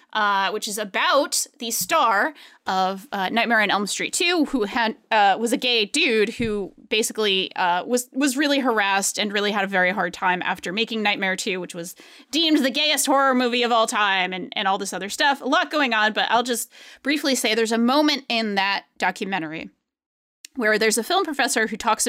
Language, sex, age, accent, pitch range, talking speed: English, female, 20-39, American, 205-270 Hz, 205 wpm